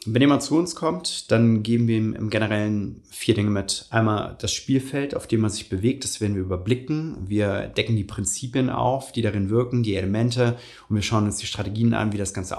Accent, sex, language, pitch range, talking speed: German, male, German, 105-125 Hz, 220 wpm